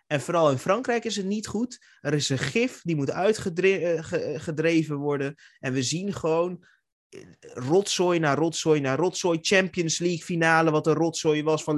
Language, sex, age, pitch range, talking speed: Dutch, male, 20-39, 120-165 Hz, 170 wpm